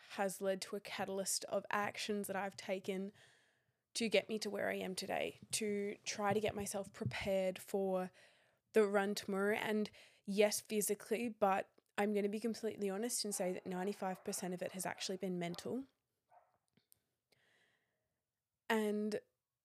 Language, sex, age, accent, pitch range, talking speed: English, female, 20-39, Australian, 195-230 Hz, 150 wpm